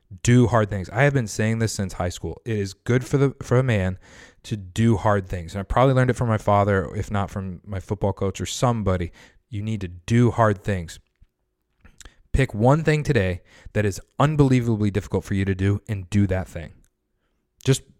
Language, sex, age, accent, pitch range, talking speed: English, male, 20-39, American, 100-120 Hz, 205 wpm